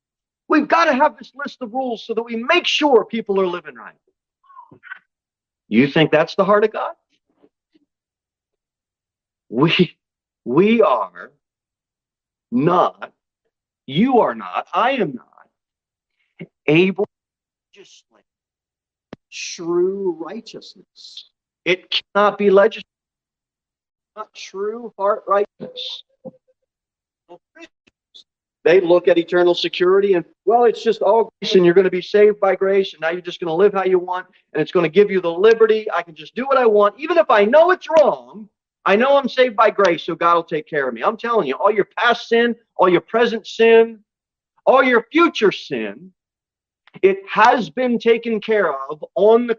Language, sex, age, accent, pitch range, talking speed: English, male, 40-59, American, 180-255 Hz, 160 wpm